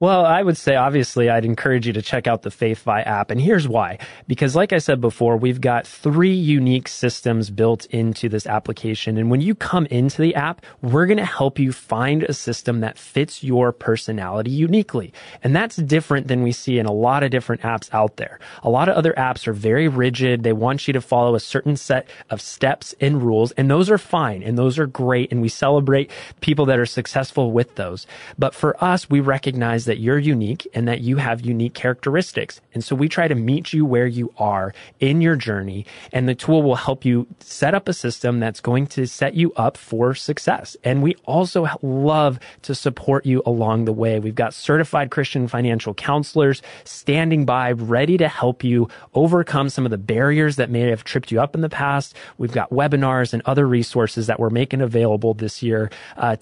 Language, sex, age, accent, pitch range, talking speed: English, male, 20-39, American, 115-145 Hz, 210 wpm